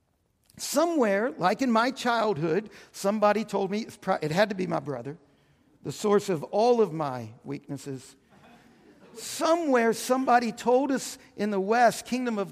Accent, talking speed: American, 145 wpm